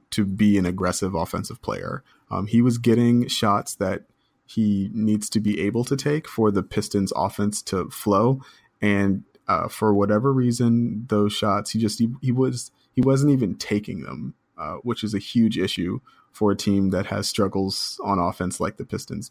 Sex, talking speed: male, 185 wpm